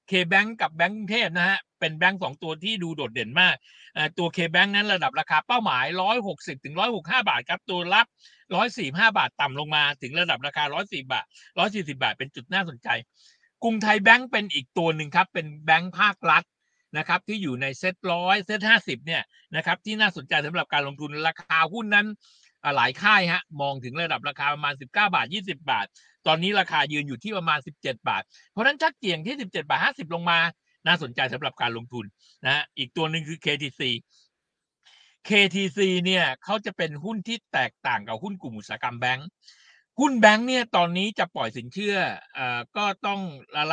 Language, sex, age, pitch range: Thai, male, 60-79, 145-205 Hz